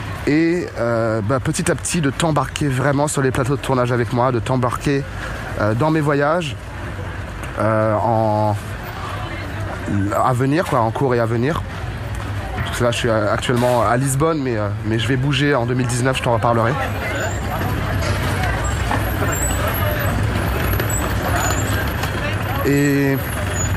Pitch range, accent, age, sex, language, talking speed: 100-140 Hz, French, 20-39, male, French, 120 wpm